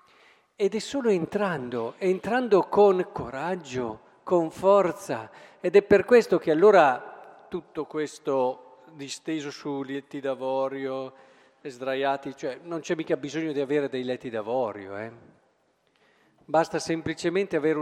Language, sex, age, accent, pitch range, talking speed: Italian, male, 50-69, native, 155-215 Hz, 125 wpm